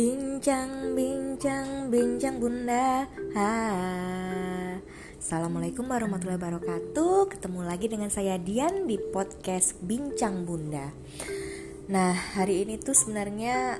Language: Indonesian